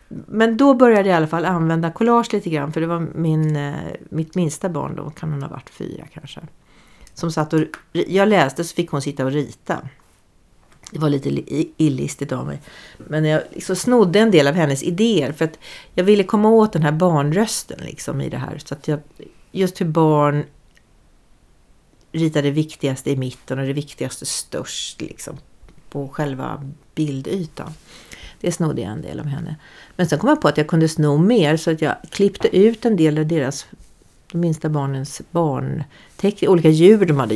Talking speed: 190 wpm